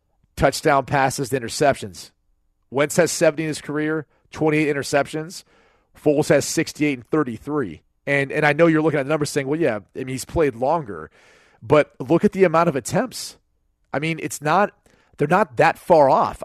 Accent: American